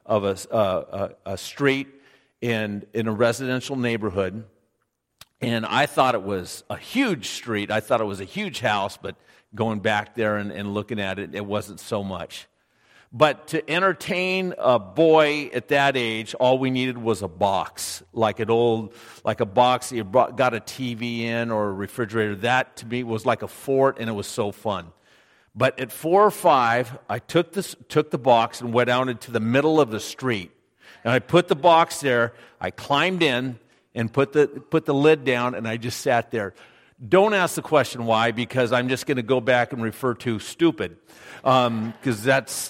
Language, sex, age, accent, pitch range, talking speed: English, male, 50-69, American, 110-140 Hz, 195 wpm